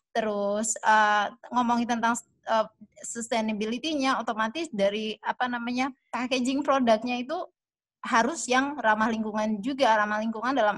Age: 20-39